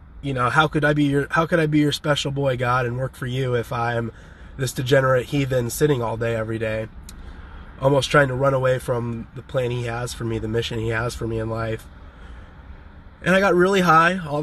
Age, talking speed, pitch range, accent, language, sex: 20-39, 230 wpm, 115-150 Hz, American, English, male